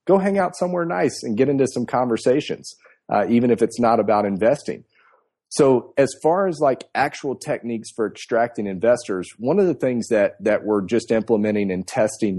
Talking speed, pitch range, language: 185 wpm, 105-135 Hz, English